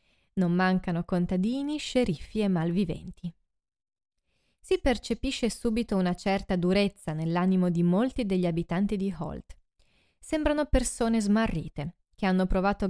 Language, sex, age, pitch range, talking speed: Italian, female, 20-39, 180-240 Hz, 115 wpm